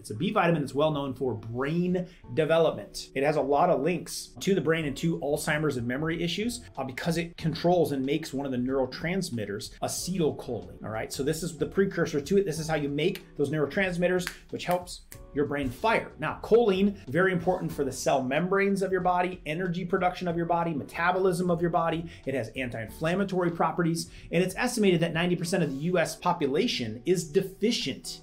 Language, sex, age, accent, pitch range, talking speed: English, male, 30-49, American, 145-185 Hz, 195 wpm